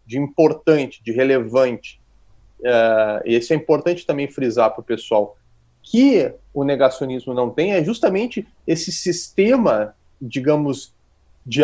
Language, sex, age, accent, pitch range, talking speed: Portuguese, male, 30-49, Brazilian, 125-200 Hz, 130 wpm